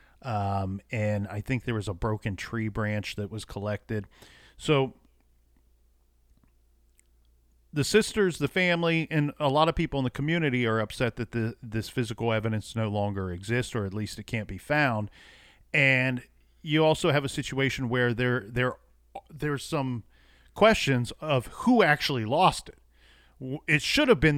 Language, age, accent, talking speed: English, 40-59, American, 160 wpm